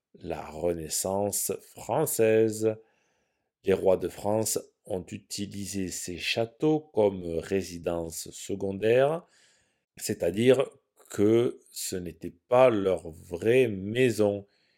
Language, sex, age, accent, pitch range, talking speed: French, male, 50-69, French, 90-115 Hz, 90 wpm